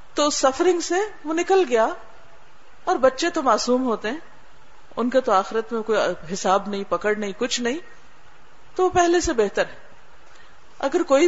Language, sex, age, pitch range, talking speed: Urdu, female, 50-69, 215-310 Hz, 175 wpm